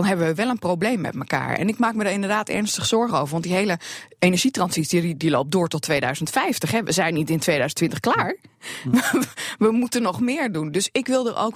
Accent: Dutch